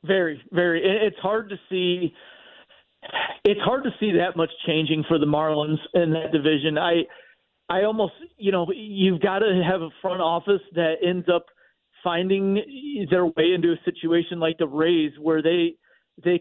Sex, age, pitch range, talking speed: male, 40-59, 165-205 Hz, 170 wpm